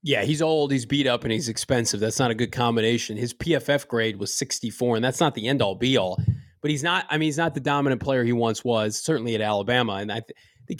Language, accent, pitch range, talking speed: English, American, 125-160 Hz, 255 wpm